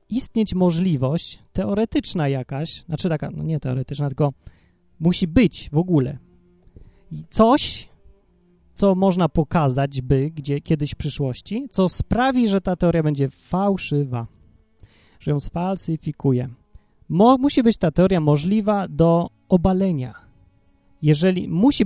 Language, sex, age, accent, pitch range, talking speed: Polish, male, 30-49, native, 140-195 Hz, 115 wpm